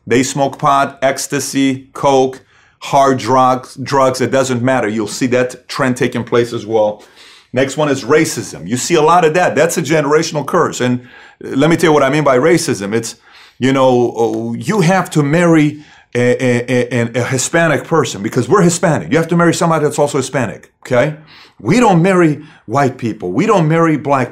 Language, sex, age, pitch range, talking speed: English, male, 40-59, 125-170 Hz, 190 wpm